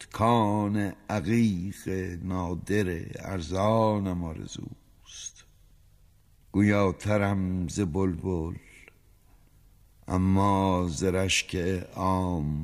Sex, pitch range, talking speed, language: male, 85-105 Hz, 55 wpm, Persian